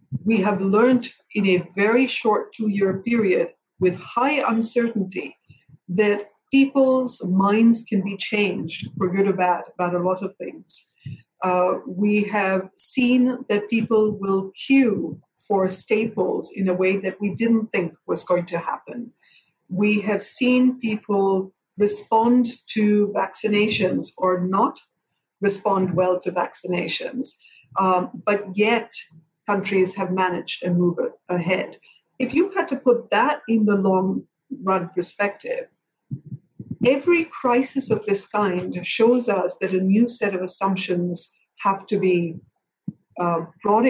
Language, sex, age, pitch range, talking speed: English, female, 50-69, 185-230 Hz, 135 wpm